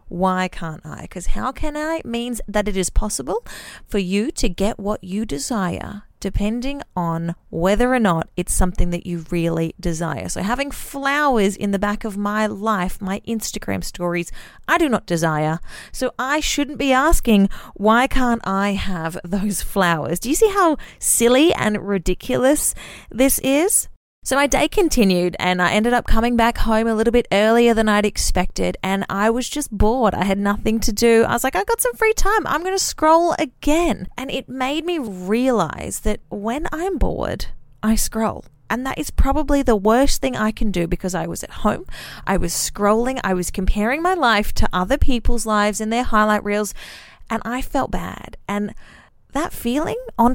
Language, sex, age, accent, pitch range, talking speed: English, female, 30-49, Australian, 195-260 Hz, 185 wpm